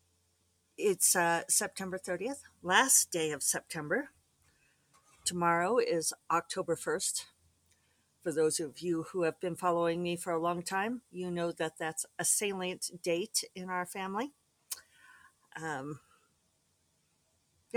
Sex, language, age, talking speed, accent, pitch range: female, English, 50-69, 120 wpm, American, 155-190 Hz